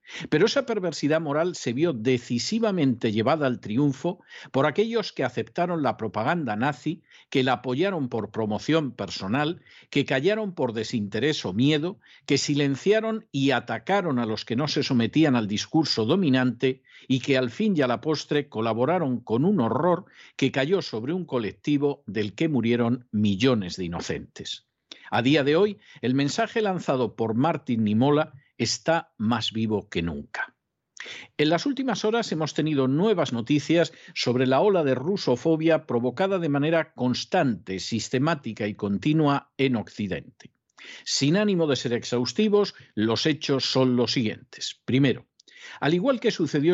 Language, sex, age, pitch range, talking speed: Spanish, male, 50-69, 120-165 Hz, 150 wpm